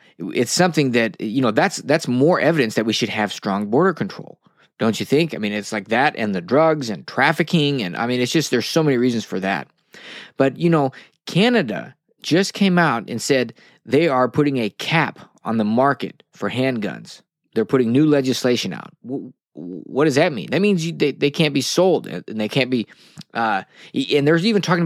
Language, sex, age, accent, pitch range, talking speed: English, male, 20-39, American, 110-150 Hz, 205 wpm